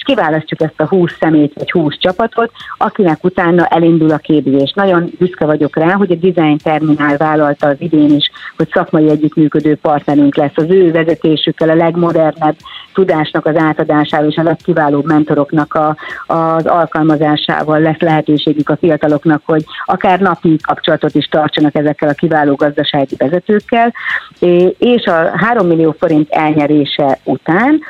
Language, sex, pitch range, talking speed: Hungarian, female, 150-175 Hz, 145 wpm